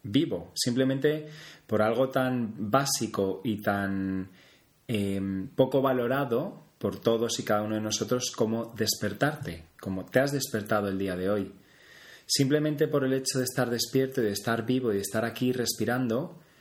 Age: 30-49